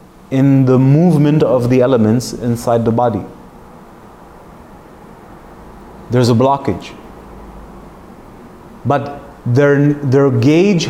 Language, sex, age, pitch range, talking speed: English, male, 30-49, 125-145 Hz, 90 wpm